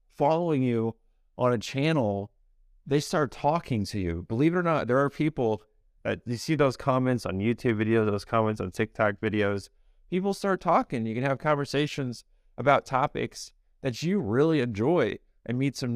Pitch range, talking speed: 110-145 Hz, 175 wpm